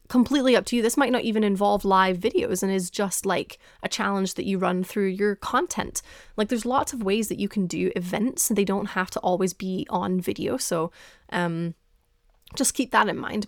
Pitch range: 185-225 Hz